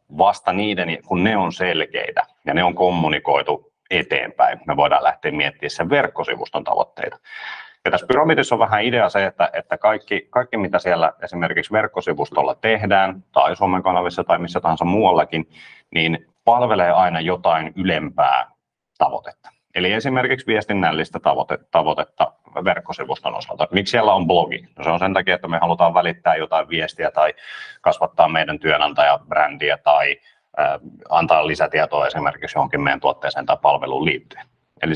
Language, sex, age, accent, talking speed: Finnish, male, 30-49, native, 145 wpm